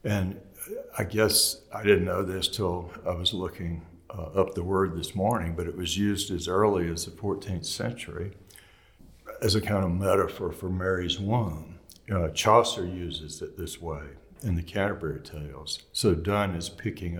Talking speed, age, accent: 170 wpm, 60-79, American